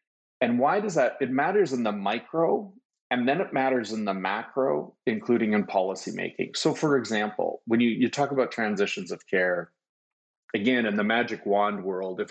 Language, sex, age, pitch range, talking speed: English, male, 30-49, 100-130 Hz, 180 wpm